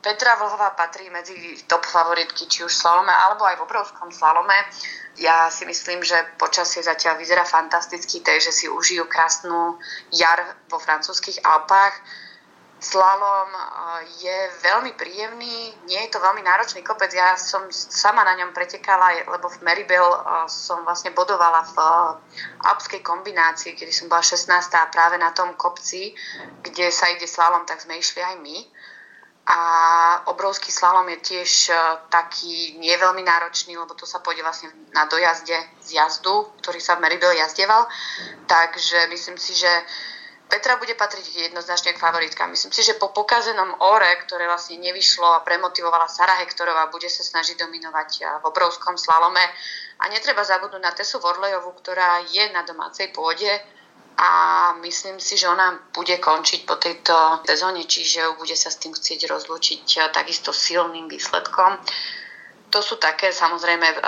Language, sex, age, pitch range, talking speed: Slovak, female, 20-39, 165-185 Hz, 150 wpm